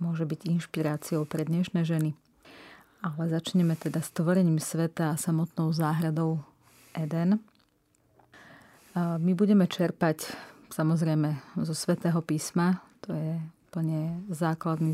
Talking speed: 110 wpm